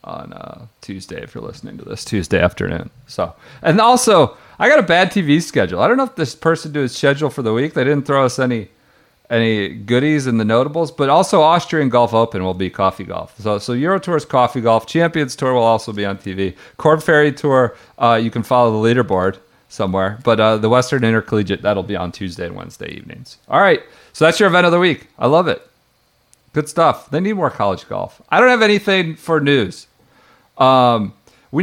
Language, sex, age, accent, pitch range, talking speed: English, male, 40-59, American, 100-145 Hz, 215 wpm